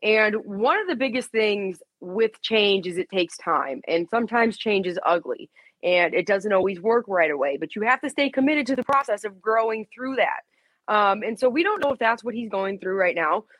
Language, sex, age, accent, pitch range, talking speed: English, female, 20-39, American, 195-255 Hz, 225 wpm